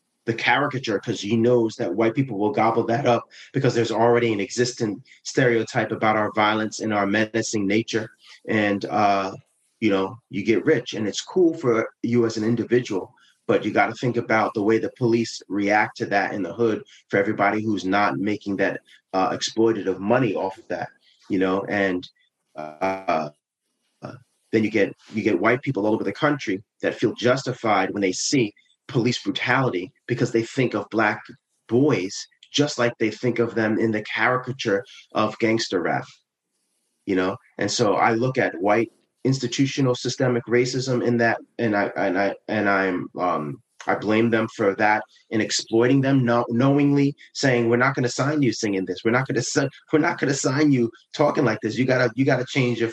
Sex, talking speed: male, 195 wpm